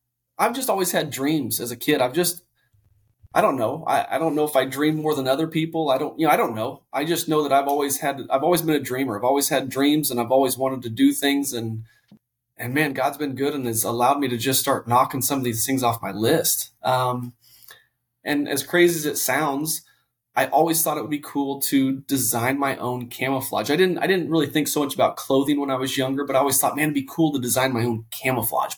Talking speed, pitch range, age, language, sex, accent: 250 wpm, 120-145 Hz, 20-39, English, male, American